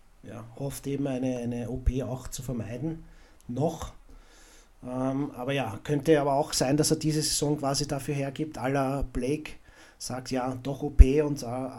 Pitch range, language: 125-145 Hz, German